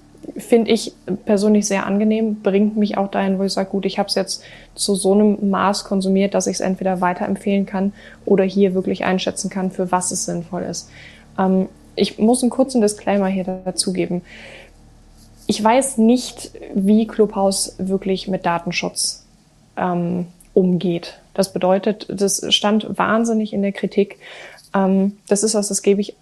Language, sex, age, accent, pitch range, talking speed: German, female, 20-39, German, 185-210 Hz, 165 wpm